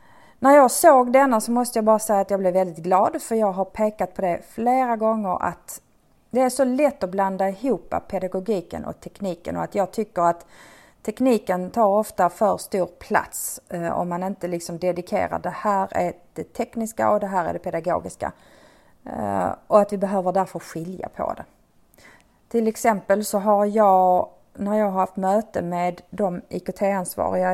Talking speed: 175 wpm